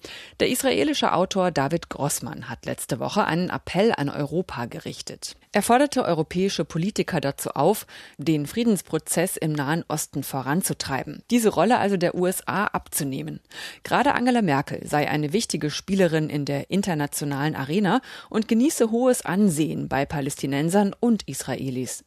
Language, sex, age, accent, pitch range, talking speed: German, female, 30-49, German, 150-205 Hz, 135 wpm